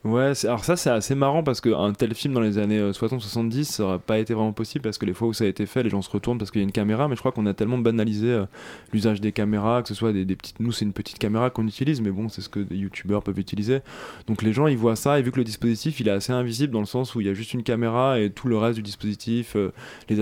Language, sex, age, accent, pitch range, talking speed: French, male, 20-39, French, 105-125 Hz, 315 wpm